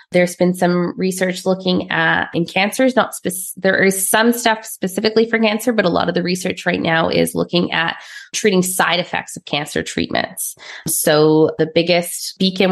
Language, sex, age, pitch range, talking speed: English, female, 20-39, 160-200 Hz, 180 wpm